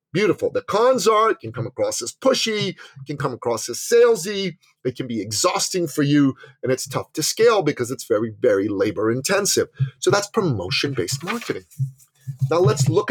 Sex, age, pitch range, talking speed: male, 40-59, 135-200 Hz, 185 wpm